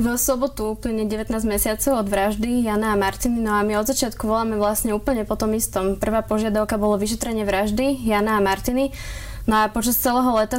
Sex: female